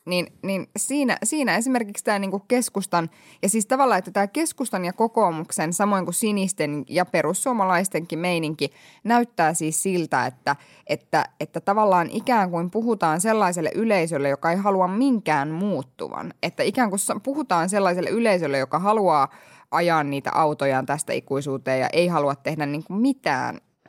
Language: Finnish